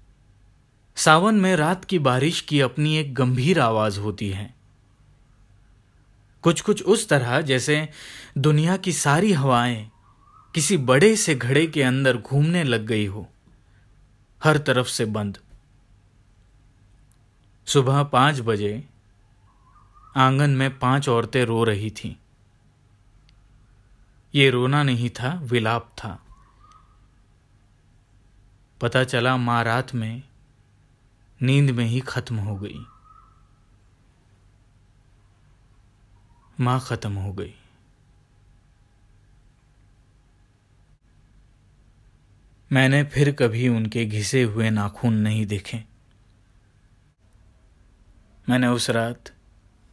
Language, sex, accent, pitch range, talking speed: Hindi, male, native, 105-130 Hz, 95 wpm